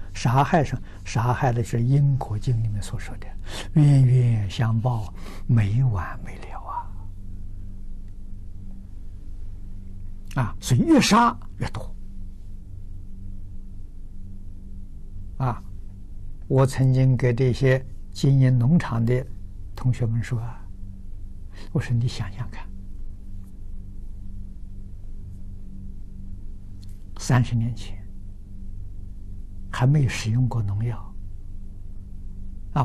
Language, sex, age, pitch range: Chinese, male, 60-79, 95-125 Hz